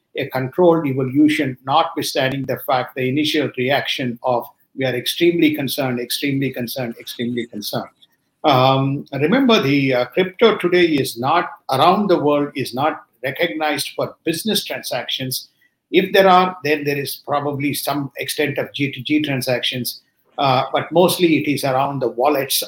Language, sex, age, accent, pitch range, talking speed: English, male, 50-69, Indian, 130-155 Hz, 145 wpm